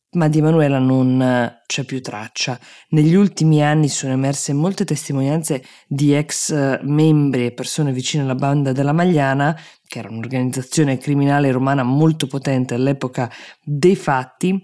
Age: 20-39